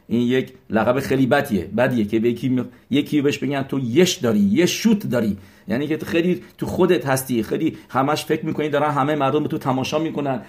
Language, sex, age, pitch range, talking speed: English, male, 50-69, 115-150 Hz, 210 wpm